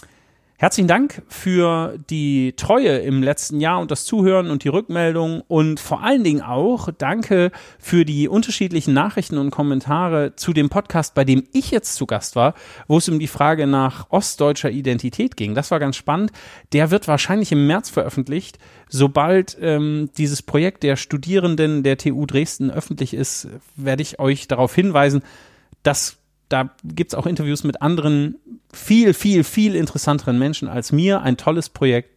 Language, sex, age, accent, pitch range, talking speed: German, male, 40-59, German, 135-175 Hz, 165 wpm